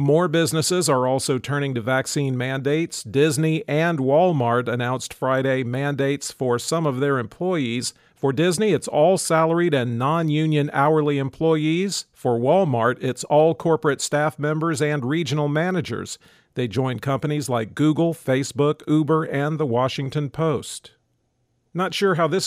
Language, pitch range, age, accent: English, 130-165 Hz, 50-69, American